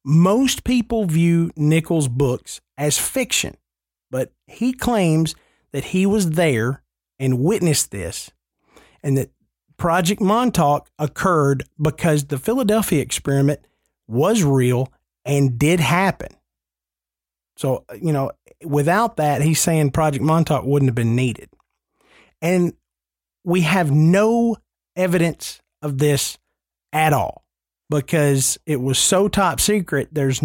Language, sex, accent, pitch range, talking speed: English, male, American, 135-180 Hz, 120 wpm